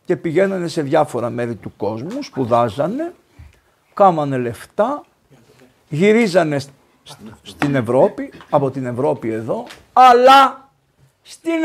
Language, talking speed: Greek, 110 wpm